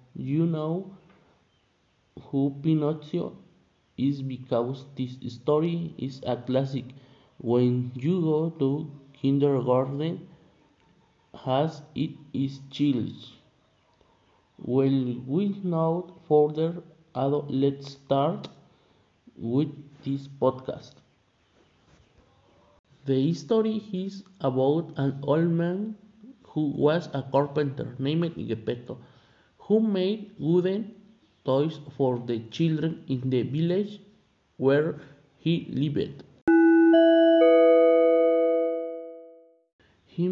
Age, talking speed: 50-69, 85 wpm